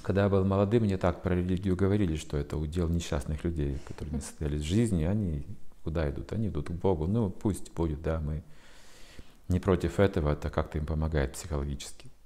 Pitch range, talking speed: 75-100 Hz, 190 wpm